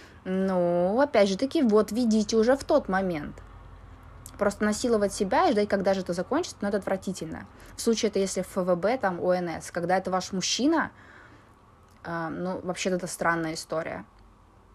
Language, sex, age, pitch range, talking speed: Russian, female, 20-39, 170-225 Hz, 165 wpm